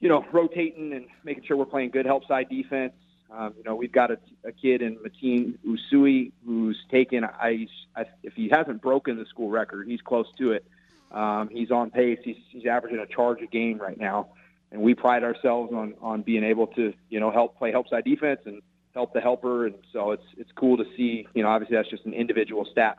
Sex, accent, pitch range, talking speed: male, American, 110-130 Hz, 220 wpm